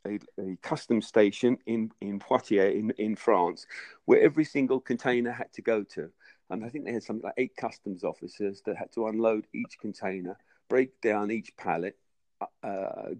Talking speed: 175 wpm